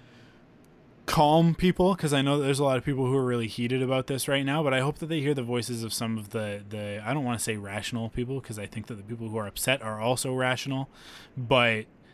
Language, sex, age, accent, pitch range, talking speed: English, male, 20-39, American, 110-135 Hz, 250 wpm